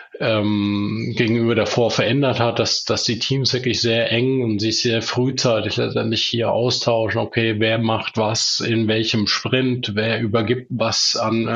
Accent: German